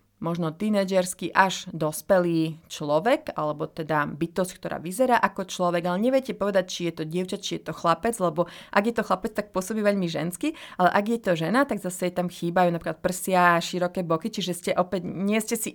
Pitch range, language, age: 170-200 Hz, Slovak, 30-49